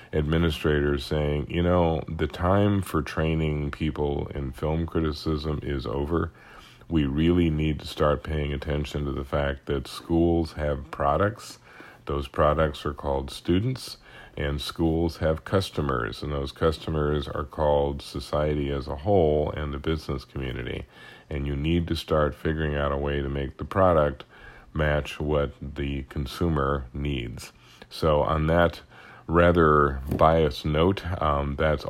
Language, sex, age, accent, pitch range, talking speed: English, male, 40-59, American, 70-80 Hz, 145 wpm